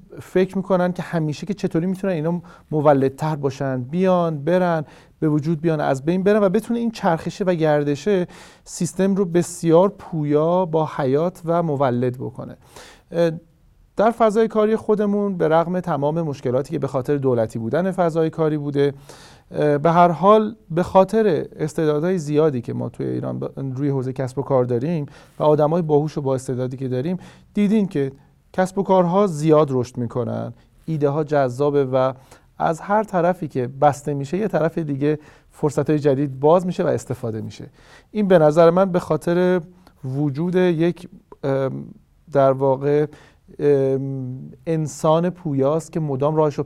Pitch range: 135-180 Hz